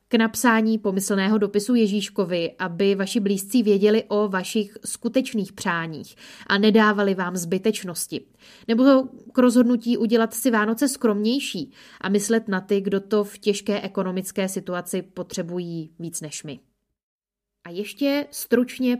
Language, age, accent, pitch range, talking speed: Czech, 20-39, native, 185-225 Hz, 130 wpm